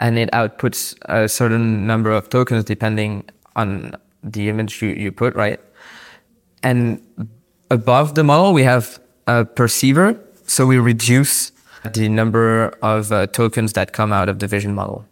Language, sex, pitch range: English, male, 105-120 Hz